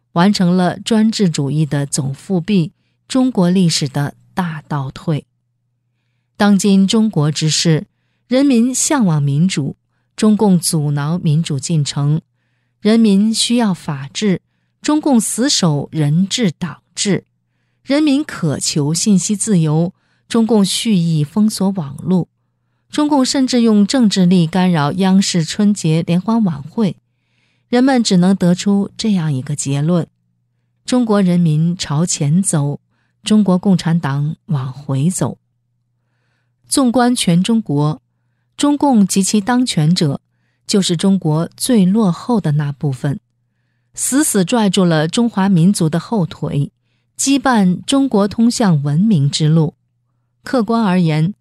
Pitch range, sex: 145-210 Hz, female